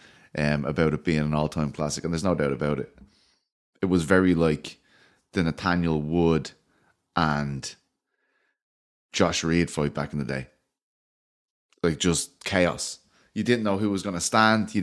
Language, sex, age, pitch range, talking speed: English, male, 20-39, 80-110 Hz, 160 wpm